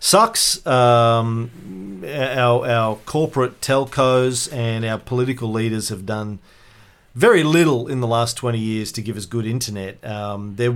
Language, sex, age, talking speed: English, male, 40-59, 145 wpm